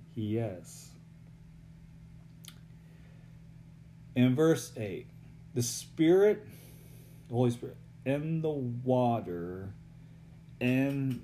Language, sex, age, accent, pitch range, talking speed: English, male, 40-59, American, 120-155 Hz, 65 wpm